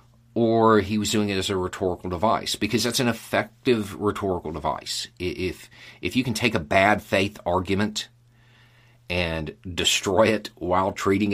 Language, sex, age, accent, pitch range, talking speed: English, male, 40-59, American, 90-120 Hz, 155 wpm